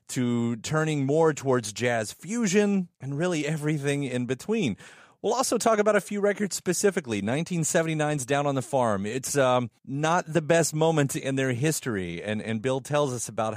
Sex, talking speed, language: male, 170 wpm, English